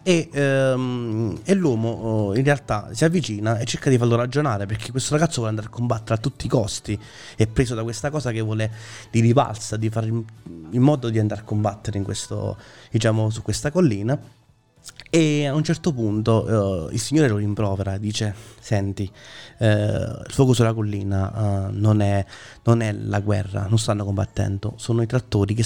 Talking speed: 185 wpm